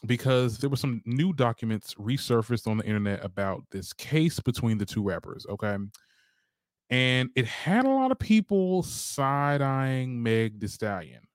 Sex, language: male, English